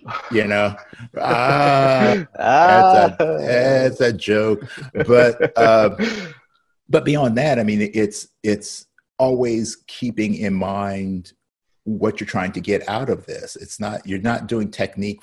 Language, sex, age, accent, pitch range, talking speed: English, male, 50-69, American, 90-125 Hz, 135 wpm